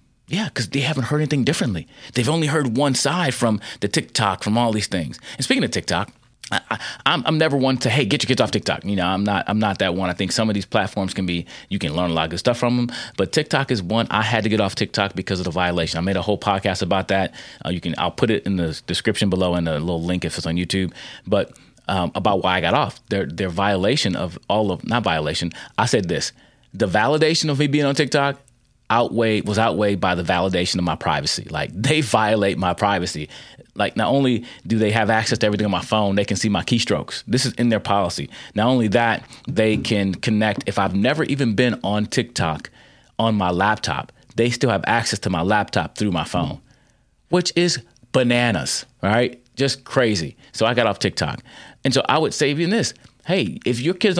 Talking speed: 230 wpm